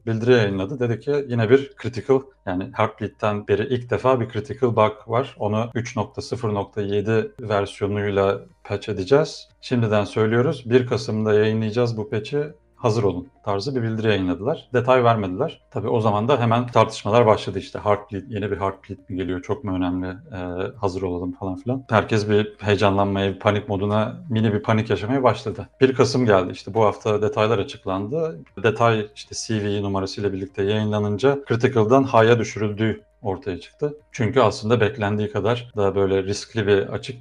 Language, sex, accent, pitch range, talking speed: Turkish, male, native, 100-125 Hz, 155 wpm